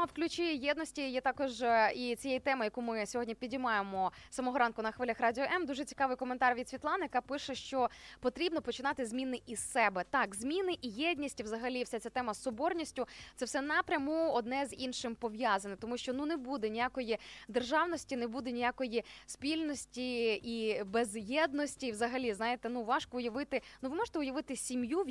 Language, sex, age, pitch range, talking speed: Ukrainian, female, 20-39, 235-285 Hz, 175 wpm